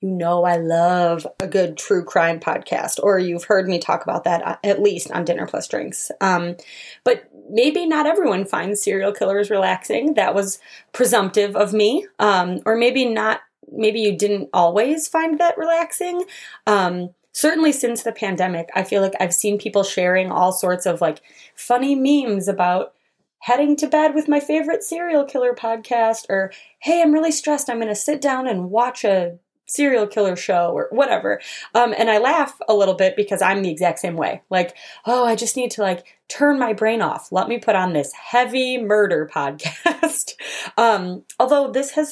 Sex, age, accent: female, 20-39, American